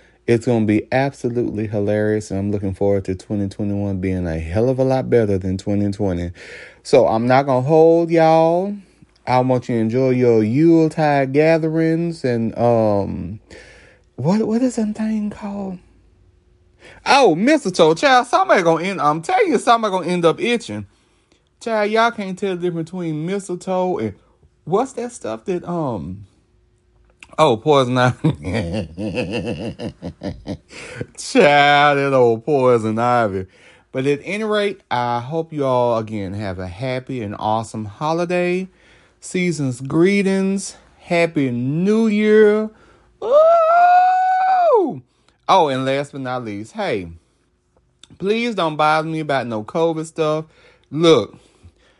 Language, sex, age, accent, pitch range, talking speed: English, male, 30-49, American, 110-175 Hz, 130 wpm